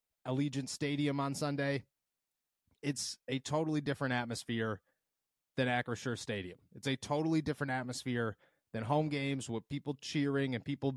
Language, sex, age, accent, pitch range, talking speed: English, male, 30-49, American, 125-145 Hz, 135 wpm